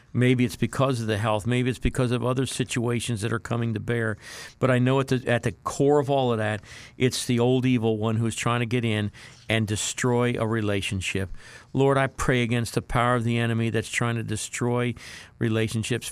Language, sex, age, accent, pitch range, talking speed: English, male, 50-69, American, 115-130 Hz, 210 wpm